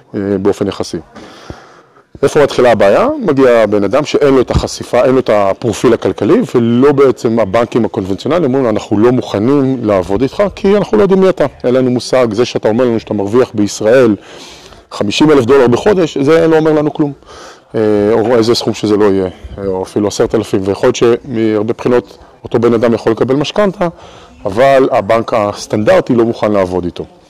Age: 20-39